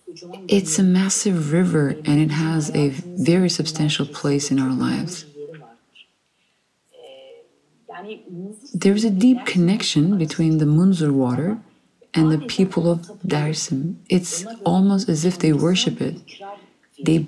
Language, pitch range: English, 155-200 Hz